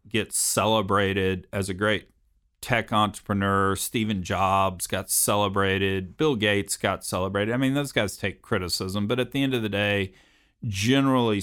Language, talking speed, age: English, 150 wpm, 40-59